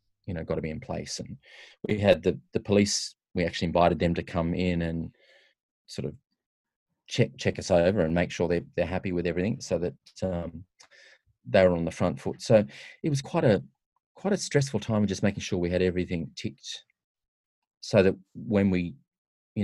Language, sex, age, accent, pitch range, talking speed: English, male, 30-49, Australian, 85-105 Hz, 200 wpm